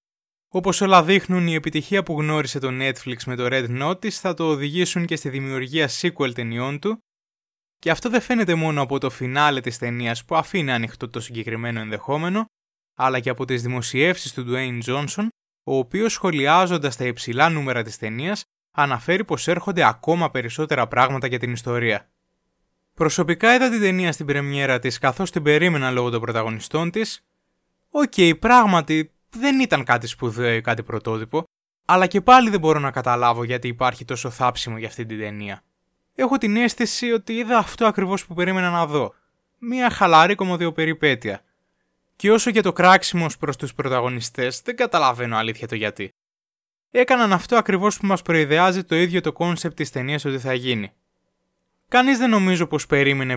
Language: Greek